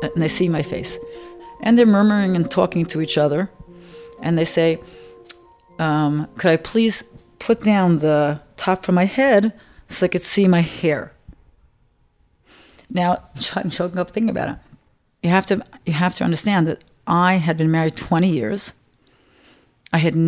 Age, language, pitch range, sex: 40-59, English, 160-210 Hz, female